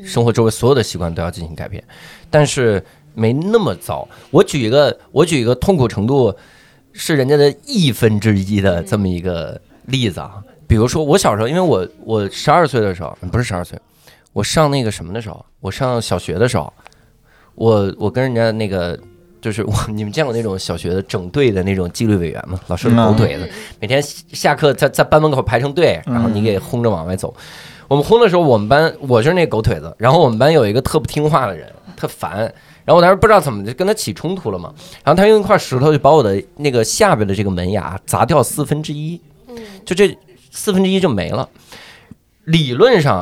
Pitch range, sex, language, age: 100-150 Hz, male, Chinese, 20-39